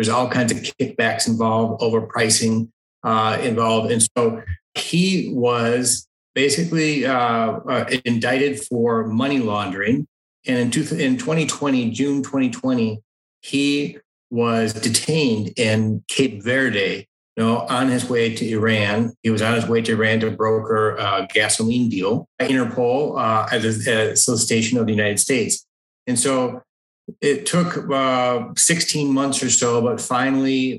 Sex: male